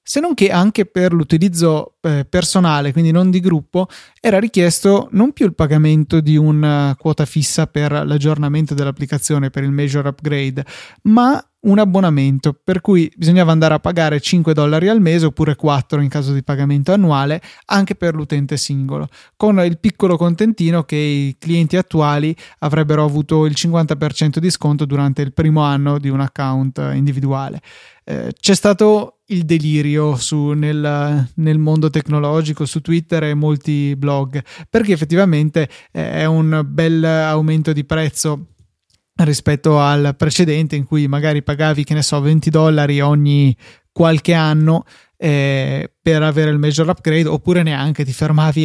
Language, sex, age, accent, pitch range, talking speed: Italian, male, 20-39, native, 145-165 Hz, 150 wpm